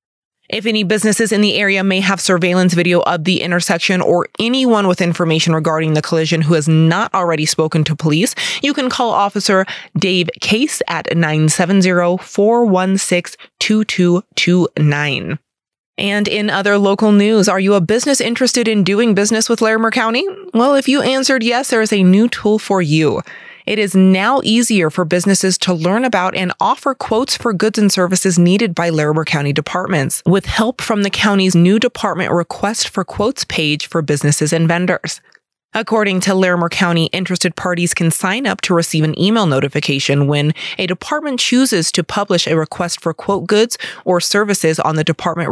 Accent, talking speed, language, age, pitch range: American, 170 wpm, English, 20-39, 165-210 Hz